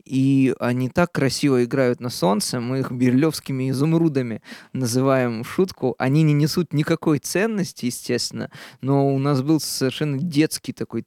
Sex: male